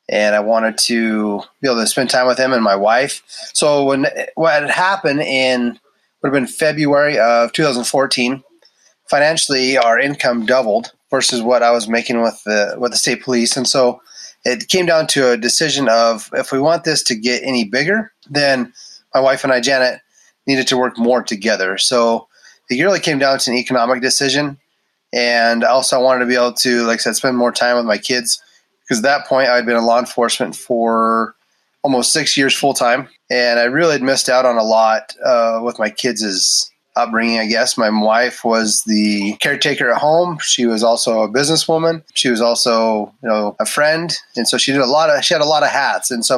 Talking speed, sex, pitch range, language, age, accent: 210 wpm, male, 115-135 Hz, English, 30-49, American